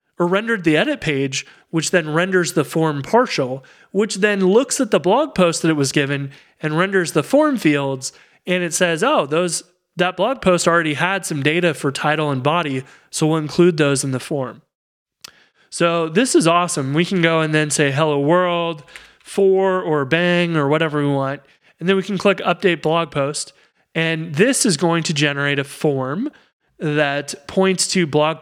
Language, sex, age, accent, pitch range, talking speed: English, male, 30-49, American, 150-185 Hz, 190 wpm